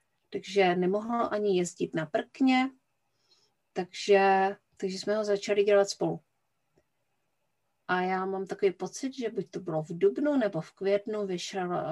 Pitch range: 185-215 Hz